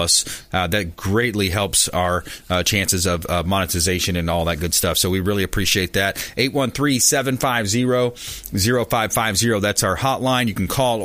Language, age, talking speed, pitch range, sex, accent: English, 30-49, 150 wpm, 95-120 Hz, male, American